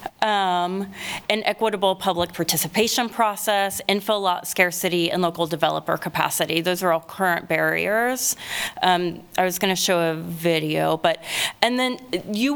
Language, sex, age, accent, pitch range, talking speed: English, female, 30-49, American, 175-205 Hz, 140 wpm